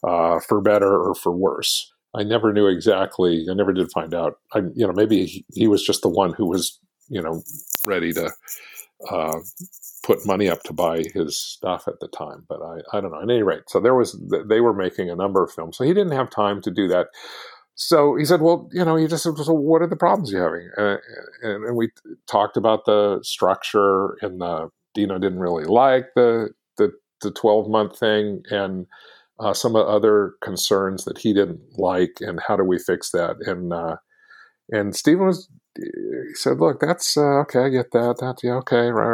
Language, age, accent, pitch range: English, 50-69, American, 105-150 Hz